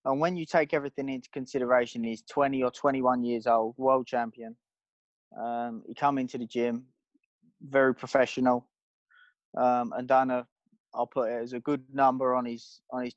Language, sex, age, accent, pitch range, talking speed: English, male, 20-39, British, 125-140 Hz, 180 wpm